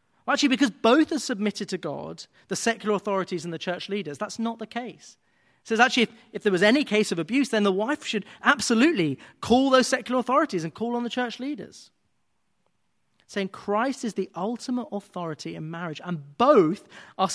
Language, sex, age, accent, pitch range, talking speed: English, male, 30-49, British, 175-235 Hz, 190 wpm